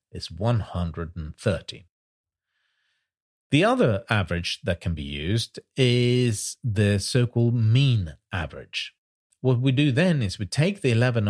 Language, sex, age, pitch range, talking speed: English, male, 40-59, 95-130 Hz, 120 wpm